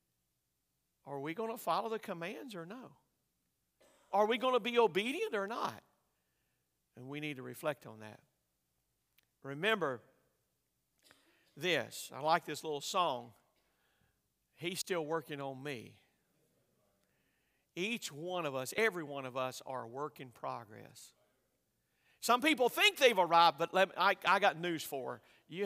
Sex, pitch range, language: male, 135-220 Hz, English